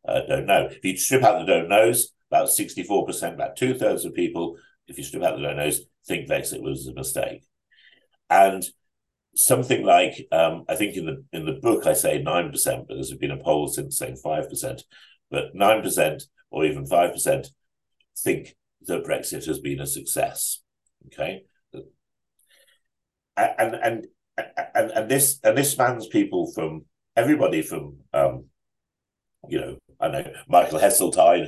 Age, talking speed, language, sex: 50-69, 170 wpm, English, male